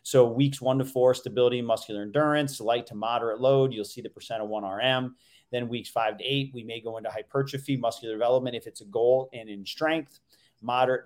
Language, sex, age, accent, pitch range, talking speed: English, male, 30-49, American, 115-140 Hz, 210 wpm